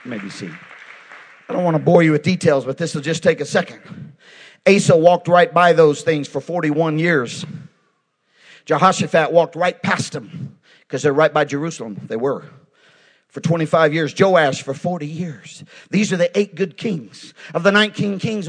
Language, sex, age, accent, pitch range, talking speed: English, male, 50-69, American, 160-215 Hz, 180 wpm